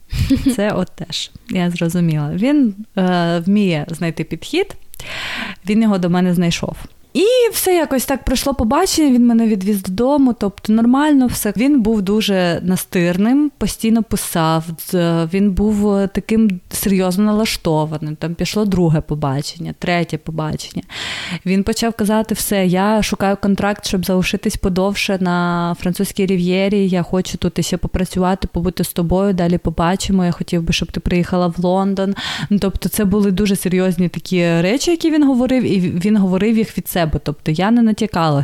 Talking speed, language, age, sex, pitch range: 150 wpm, Ukrainian, 20-39, female, 175-215 Hz